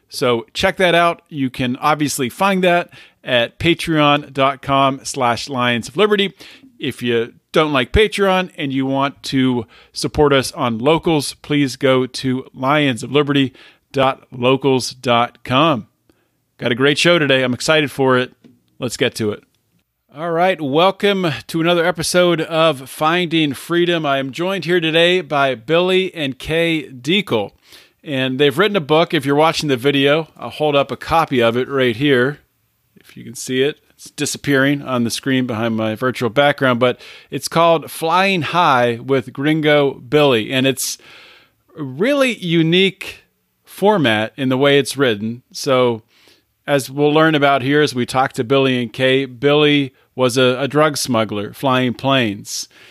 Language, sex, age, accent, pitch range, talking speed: English, male, 40-59, American, 130-165 Hz, 155 wpm